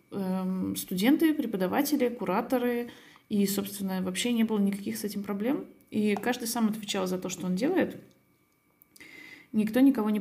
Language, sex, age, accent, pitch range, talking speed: Russian, female, 20-39, native, 200-240 Hz, 140 wpm